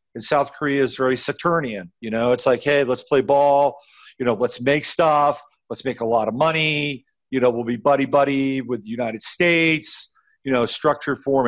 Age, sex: 50-69, male